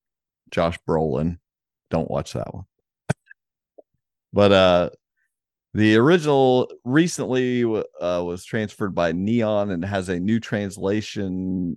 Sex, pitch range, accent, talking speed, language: male, 90-120 Hz, American, 105 wpm, English